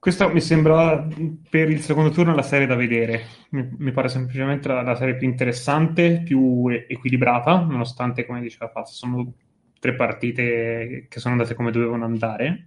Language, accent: Italian, native